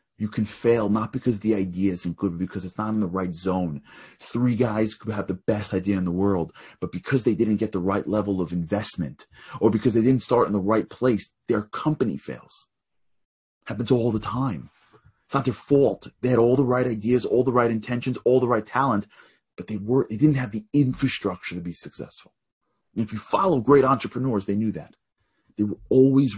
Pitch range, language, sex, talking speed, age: 100-125 Hz, English, male, 210 wpm, 30-49